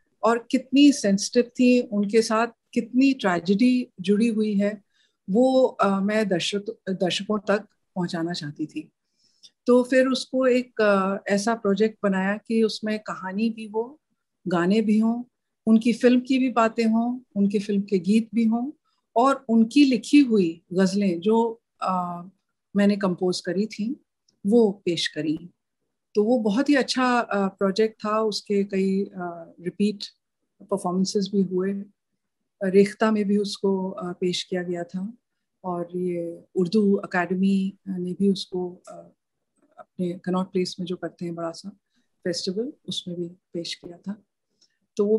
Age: 50-69